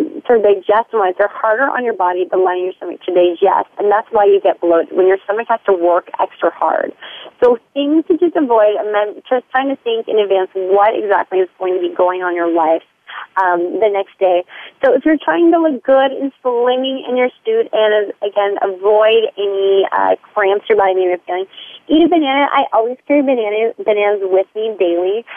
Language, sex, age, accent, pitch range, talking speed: English, female, 30-49, American, 195-270 Hz, 205 wpm